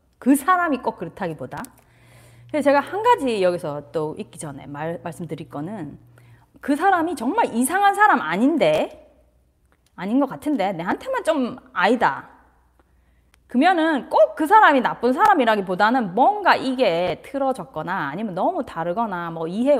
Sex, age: female, 30-49